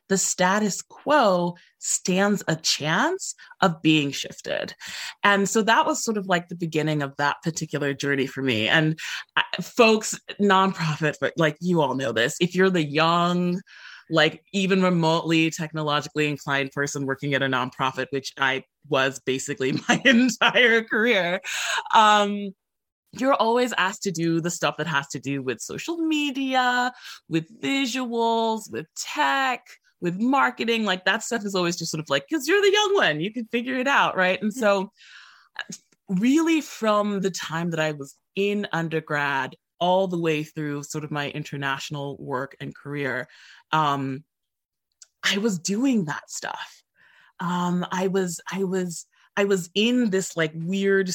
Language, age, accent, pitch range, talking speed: English, 20-39, American, 150-205 Hz, 160 wpm